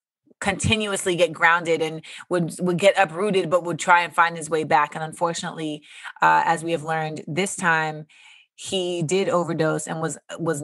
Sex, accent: female, American